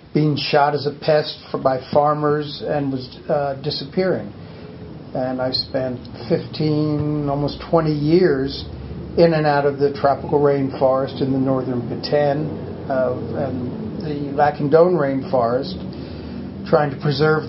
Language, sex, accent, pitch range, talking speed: English, male, American, 130-150 Hz, 130 wpm